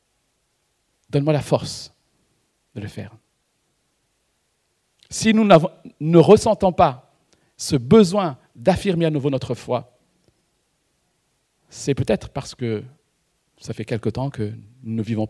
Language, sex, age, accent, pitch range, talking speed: French, male, 50-69, French, 130-195 Hz, 120 wpm